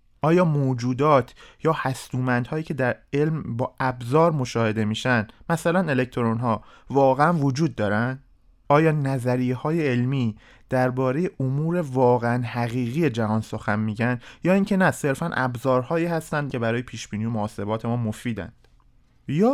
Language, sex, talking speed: Persian, male, 130 wpm